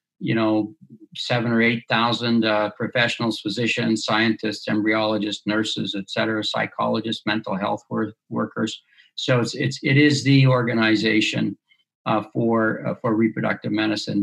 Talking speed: 135 wpm